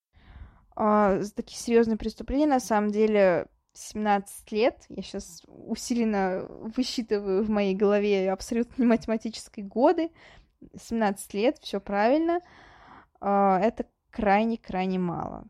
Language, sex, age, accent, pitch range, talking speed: Russian, female, 20-39, native, 195-250 Hz, 105 wpm